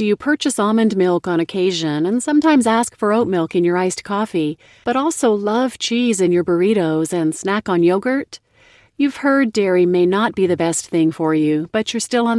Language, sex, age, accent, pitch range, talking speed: English, female, 40-59, American, 165-230 Hz, 210 wpm